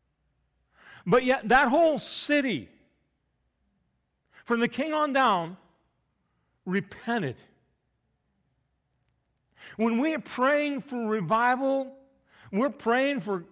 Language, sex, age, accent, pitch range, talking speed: English, male, 50-69, American, 165-230 Hz, 90 wpm